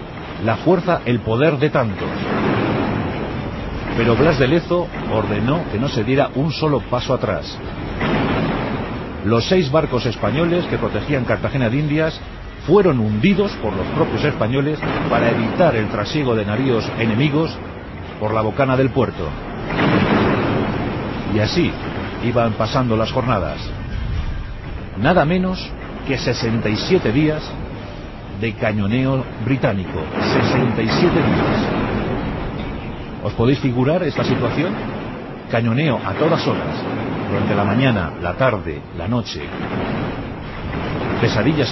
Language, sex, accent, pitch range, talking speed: Spanish, male, Spanish, 105-140 Hz, 115 wpm